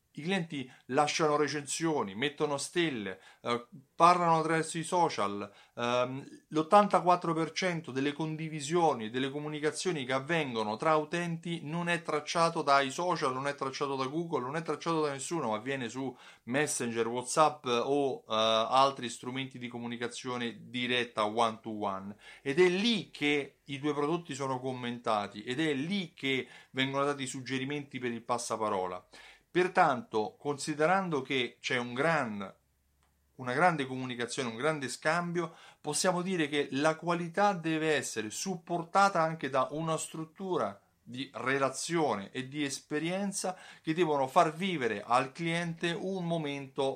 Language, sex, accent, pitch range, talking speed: Italian, male, native, 125-165 Hz, 135 wpm